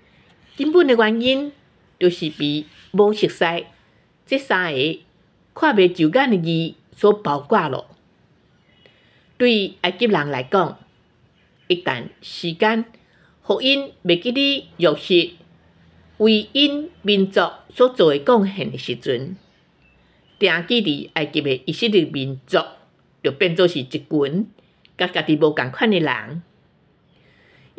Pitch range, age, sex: 150-230 Hz, 50-69, female